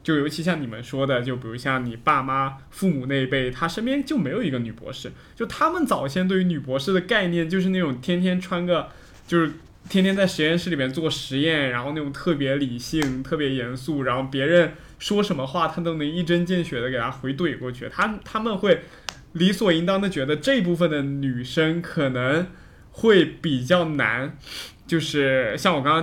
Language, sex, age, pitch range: Chinese, male, 20-39, 135-180 Hz